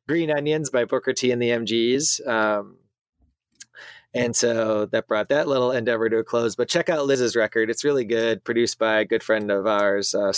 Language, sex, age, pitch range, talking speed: English, male, 20-39, 100-125 Hz, 200 wpm